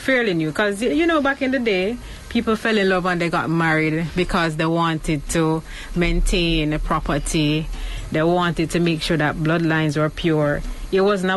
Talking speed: 185 wpm